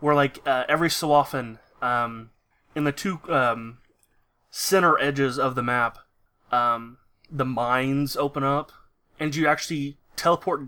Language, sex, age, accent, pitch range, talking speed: English, male, 20-39, American, 125-145 Hz, 140 wpm